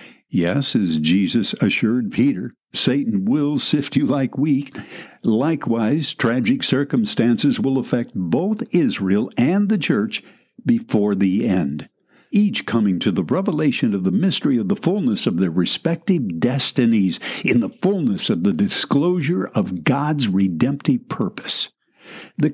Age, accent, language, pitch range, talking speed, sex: 60-79, American, English, 135-205 Hz, 135 wpm, male